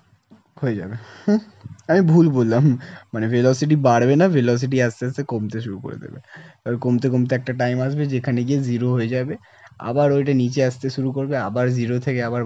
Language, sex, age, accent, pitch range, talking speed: Hindi, male, 20-39, native, 115-140 Hz, 125 wpm